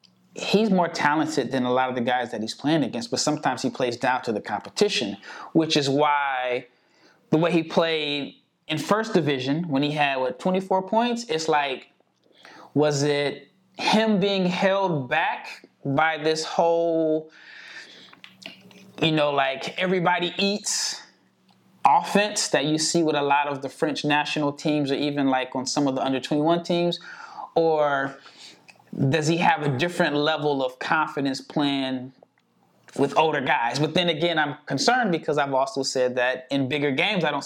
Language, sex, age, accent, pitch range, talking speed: English, male, 20-39, American, 140-175 Hz, 165 wpm